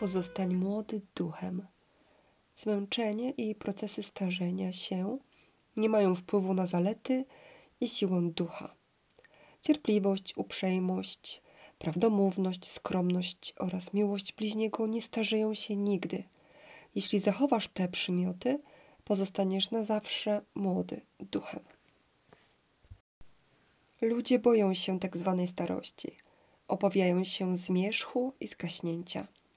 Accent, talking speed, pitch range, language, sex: native, 95 wpm, 185-220 Hz, Polish, female